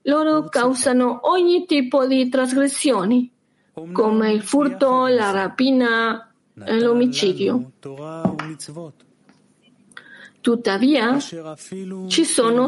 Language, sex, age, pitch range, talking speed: Italian, female, 40-59, 195-255 Hz, 75 wpm